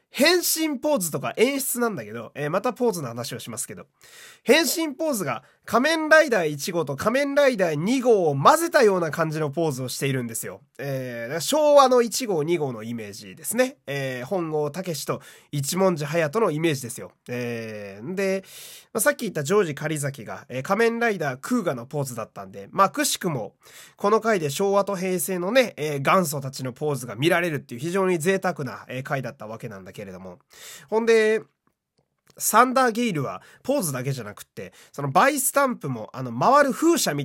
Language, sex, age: Japanese, male, 20-39